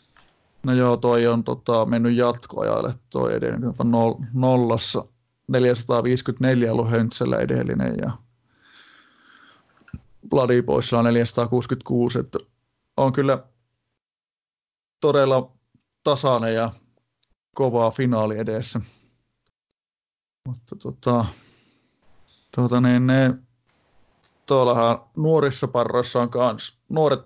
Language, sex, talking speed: Finnish, male, 85 wpm